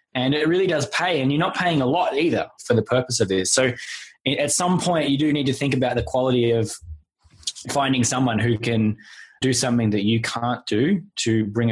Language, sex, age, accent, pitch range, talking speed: English, male, 20-39, Australian, 110-140 Hz, 215 wpm